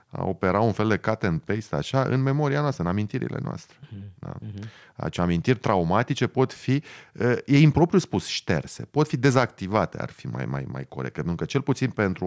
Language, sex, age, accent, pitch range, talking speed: Romanian, male, 30-49, native, 105-155 Hz, 190 wpm